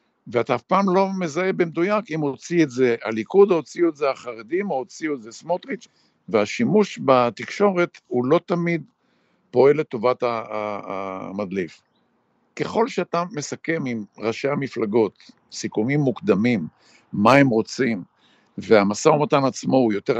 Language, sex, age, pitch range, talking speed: Hebrew, male, 60-79, 115-170 Hz, 135 wpm